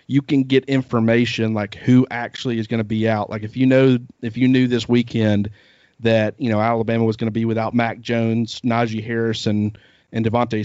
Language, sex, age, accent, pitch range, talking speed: English, male, 40-59, American, 115-125 Hz, 205 wpm